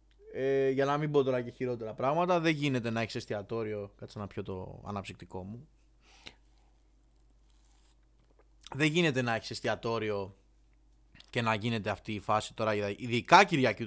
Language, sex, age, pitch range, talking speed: Greek, male, 20-39, 110-145 Hz, 145 wpm